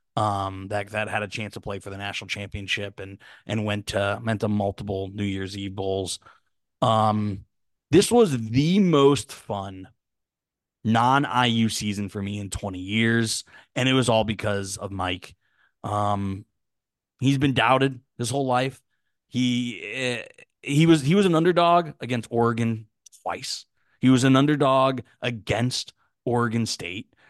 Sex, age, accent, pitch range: male, 20-39, American, 100-125 Hz